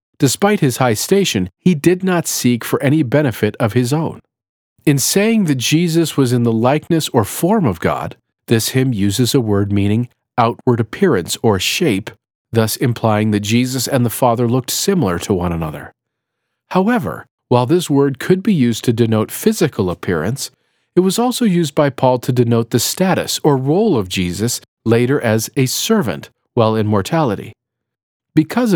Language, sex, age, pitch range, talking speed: English, male, 40-59, 110-150 Hz, 170 wpm